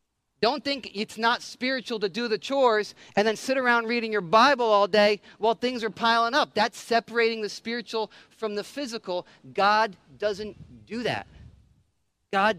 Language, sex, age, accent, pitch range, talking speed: English, male, 40-59, American, 195-230 Hz, 165 wpm